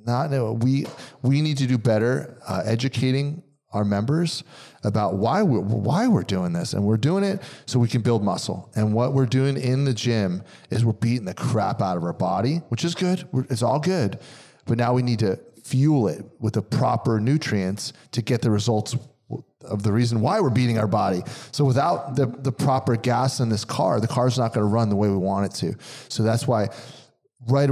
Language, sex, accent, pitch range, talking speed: English, male, American, 110-135 Hz, 215 wpm